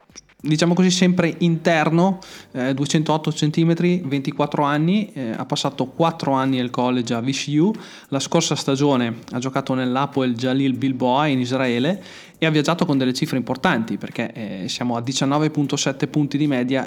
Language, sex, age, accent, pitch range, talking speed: Italian, male, 20-39, native, 125-150 Hz, 155 wpm